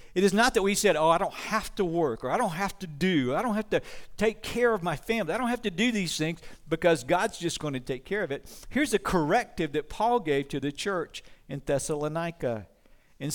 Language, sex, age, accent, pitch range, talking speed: English, male, 50-69, American, 130-180 Hz, 245 wpm